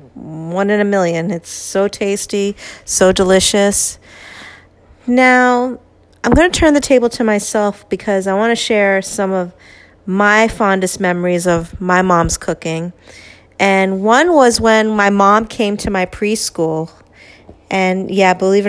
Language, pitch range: English, 180-215 Hz